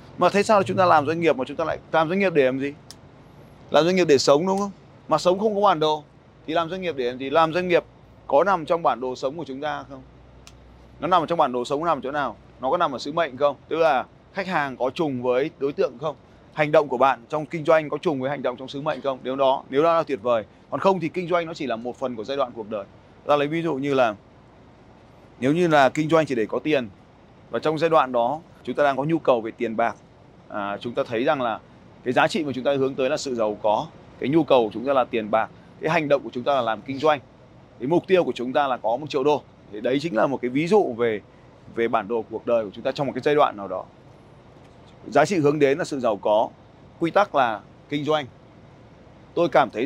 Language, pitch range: Vietnamese, 125-160 Hz